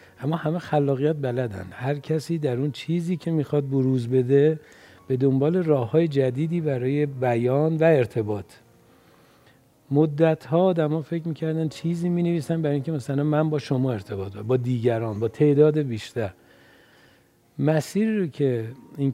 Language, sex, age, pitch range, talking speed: Persian, male, 50-69, 120-155 Hz, 140 wpm